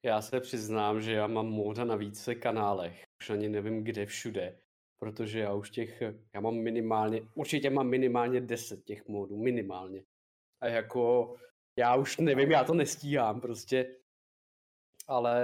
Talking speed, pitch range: 150 wpm, 110-125 Hz